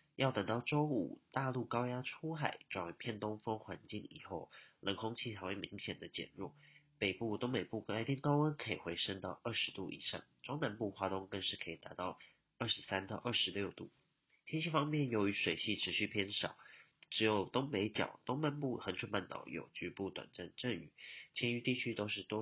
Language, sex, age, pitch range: Chinese, male, 30-49, 100-130 Hz